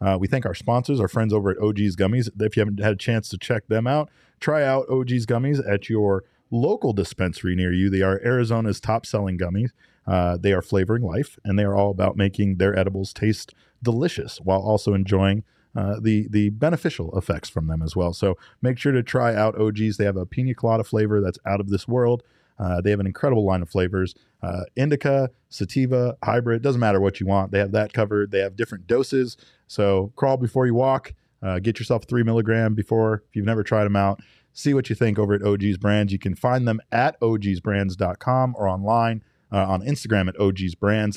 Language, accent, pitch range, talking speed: English, American, 100-120 Hz, 210 wpm